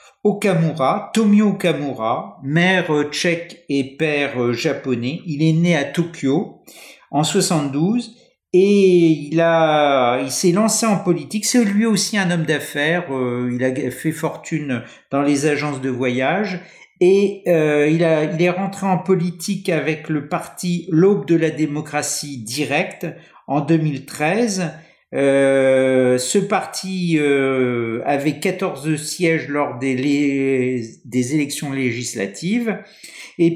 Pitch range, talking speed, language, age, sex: 140-180 Hz, 125 wpm, French, 50-69, male